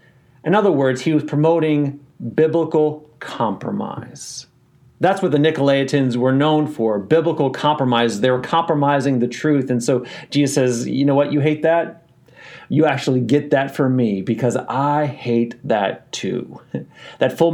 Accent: American